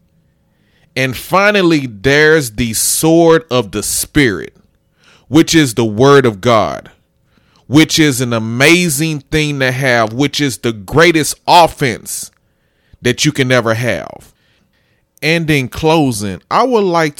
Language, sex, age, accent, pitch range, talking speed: English, male, 30-49, American, 105-145 Hz, 130 wpm